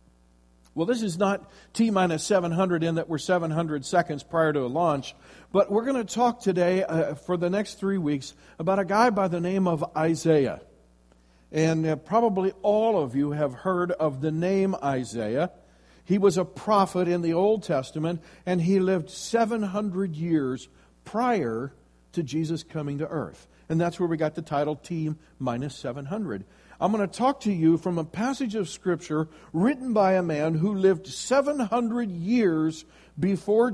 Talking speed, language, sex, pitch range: 165 wpm, English, male, 145-195 Hz